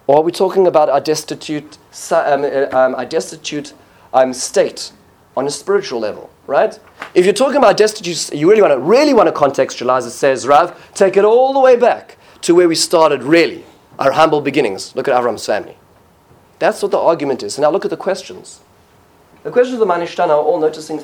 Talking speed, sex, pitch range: 205 wpm, male, 140-195 Hz